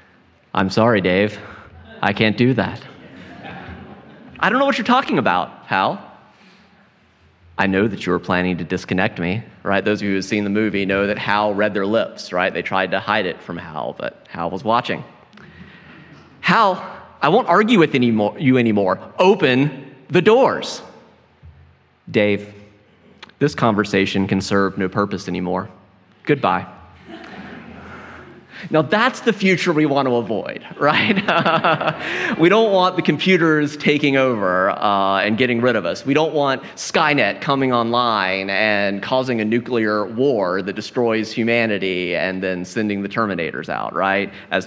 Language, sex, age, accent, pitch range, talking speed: English, male, 30-49, American, 95-130 Hz, 155 wpm